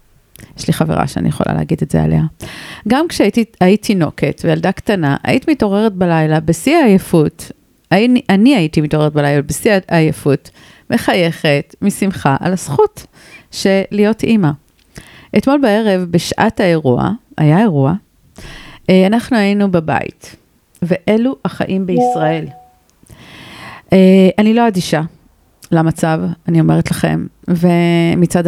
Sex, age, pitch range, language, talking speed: female, 40-59, 155-200 Hz, Hebrew, 110 wpm